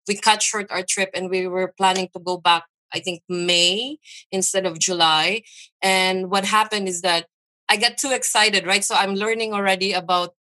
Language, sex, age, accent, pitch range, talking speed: English, female, 20-39, Filipino, 195-245 Hz, 190 wpm